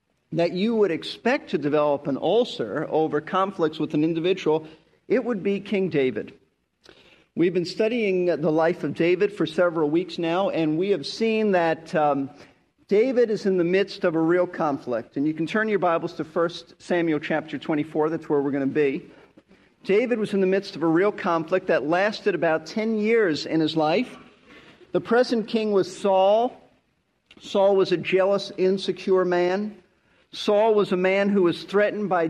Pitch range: 170-205 Hz